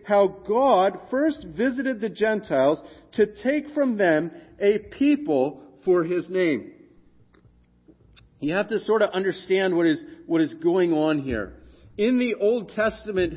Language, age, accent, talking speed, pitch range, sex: English, 40-59, American, 145 wpm, 165-235 Hz, male